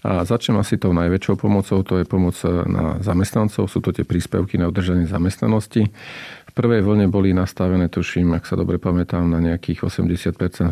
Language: Slovak